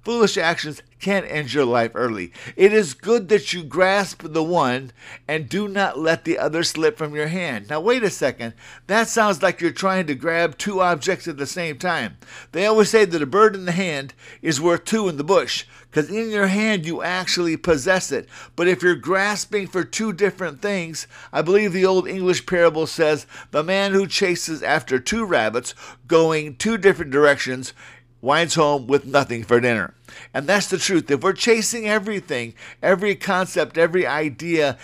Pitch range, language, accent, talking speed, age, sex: 150-195 Hz, English, American, 190 wpm, 50-69, male